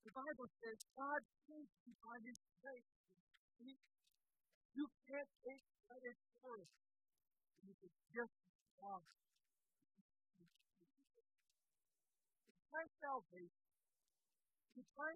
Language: English